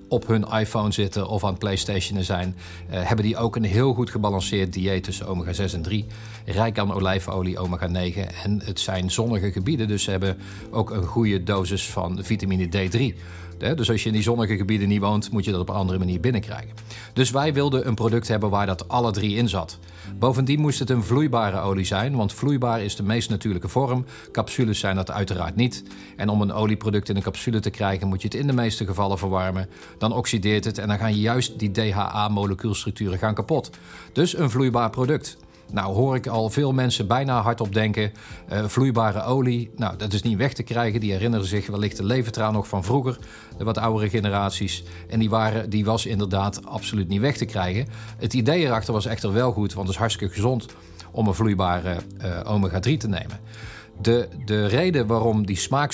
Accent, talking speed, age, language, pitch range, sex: Dutch, 205 wpm, 40-59, Dutch, 100-115 Hz, male